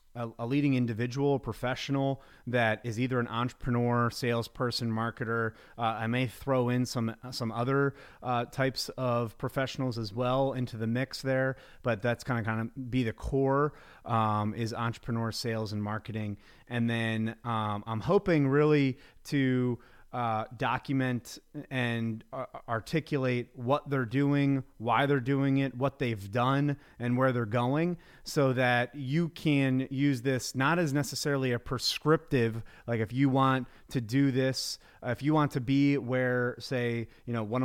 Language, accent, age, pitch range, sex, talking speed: English, American, 30-49, 115-135 Hz, male, 160 wpm